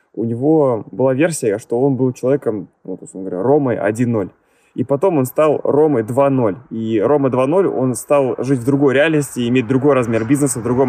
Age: 20-39